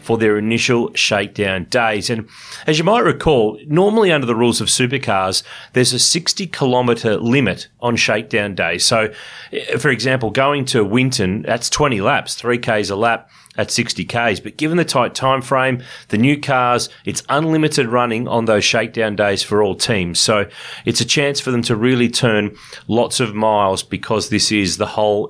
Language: English